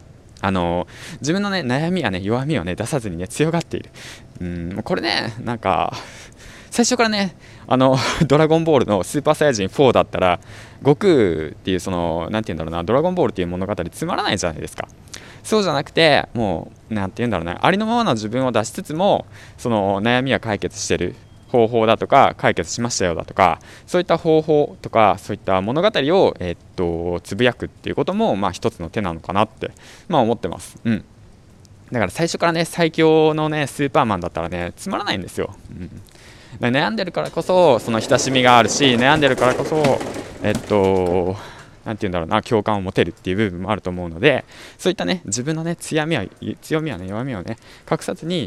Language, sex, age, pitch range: Japanese, male, 20-39, 100-145 Hz